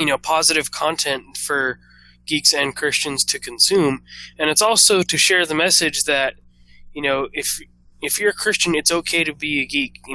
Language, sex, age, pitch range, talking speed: English, male, 20-39, 125-150 Hz, 190 wpm